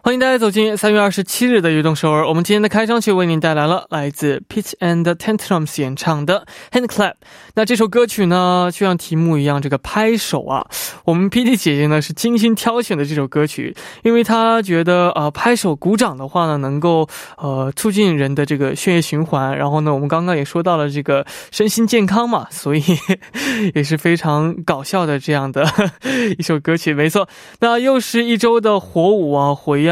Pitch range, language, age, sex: 155-210 Hz, Korean, 20-39, male